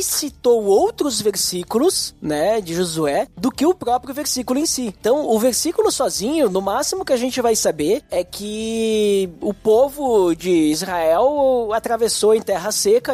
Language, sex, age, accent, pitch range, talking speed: Portuguese, male, 20-39, Brazilian, 185-265 Hz, 155 wpm